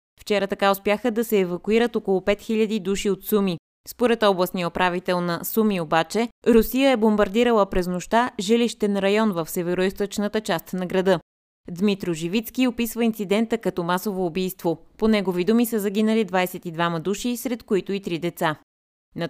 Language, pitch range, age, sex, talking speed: Bulgarian, 180-220 Hz, 20-39, female, 150 wpm